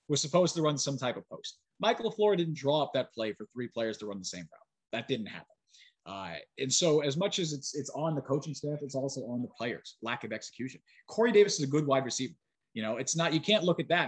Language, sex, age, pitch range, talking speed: English, male, 30-49, 130-170 Hz, 265 wpm